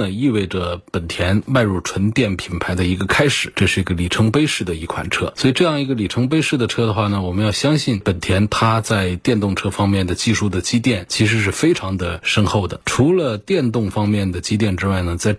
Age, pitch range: 20-39, 90-110 Hz